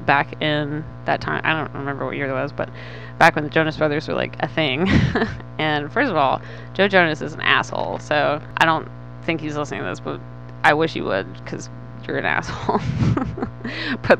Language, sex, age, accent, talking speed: English, female, 20-39, American, 205 wpm